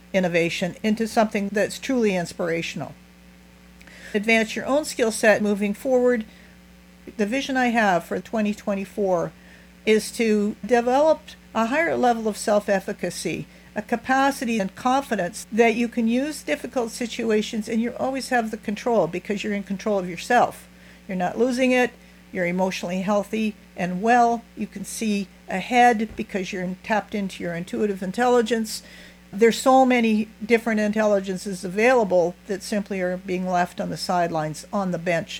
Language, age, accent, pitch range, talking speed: English, 50-69, American, 180-225 Hz, 145 wpm